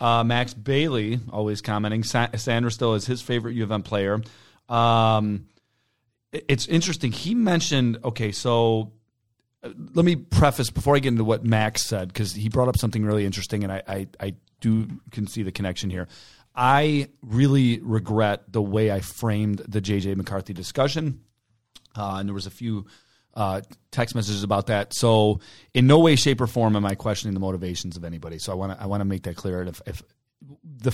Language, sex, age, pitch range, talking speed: English, male, 30-49, 100-120 Hz, 190 wpm